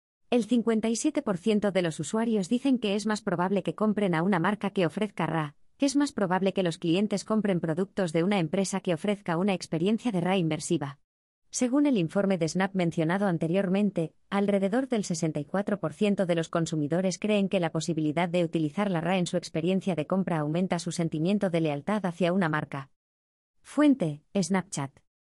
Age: 20-39